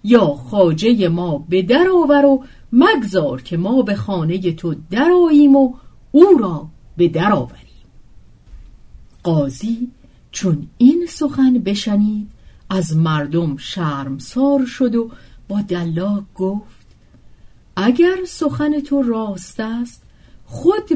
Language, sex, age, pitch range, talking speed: Persian, female, 40-59, 165-270 Hz, 110 wpm